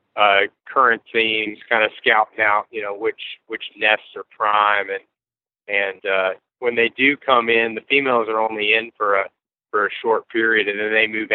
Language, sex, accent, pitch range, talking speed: English, male, American, 105-140 Hz, 195 wpm